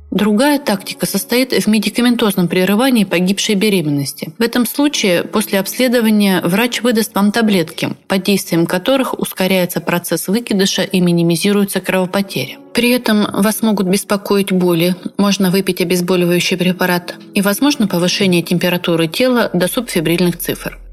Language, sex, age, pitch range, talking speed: Russian, female, 30-49, 180-220 Hz, 125 wpm